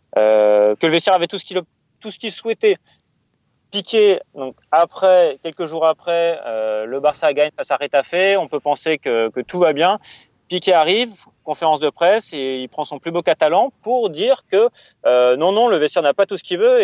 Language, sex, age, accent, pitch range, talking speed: French, male, 30-49, French, 130-180 Hz, 210 wpm